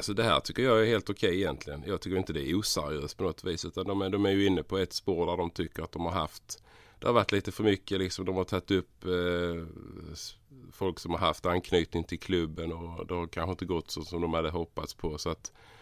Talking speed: 265 wpm